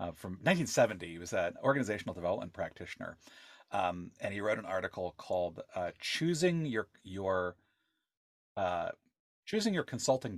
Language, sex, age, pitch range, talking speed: English, male, 30-49, 105-145 Hz, 140 wpm